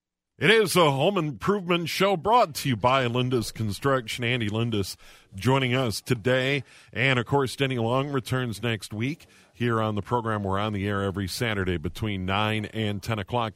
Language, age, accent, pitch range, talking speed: English, 50-69, American, 105-135 Hz, 175 wpm